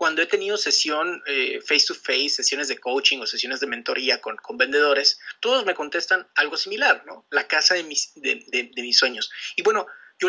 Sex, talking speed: male, 210 wpm